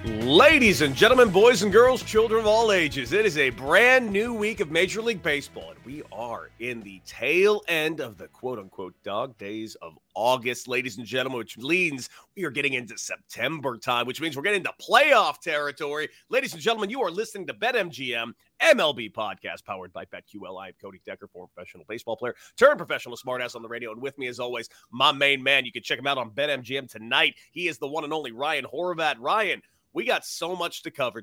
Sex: male